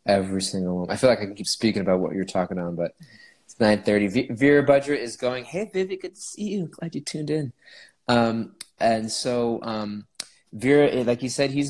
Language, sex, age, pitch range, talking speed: English, male, 20-39, 95-120 Hz, 215 wpm